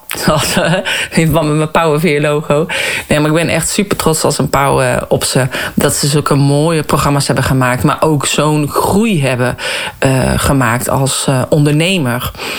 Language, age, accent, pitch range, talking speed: Dutch, 40-59, Dutch, 145-175 Hz, 165 wpm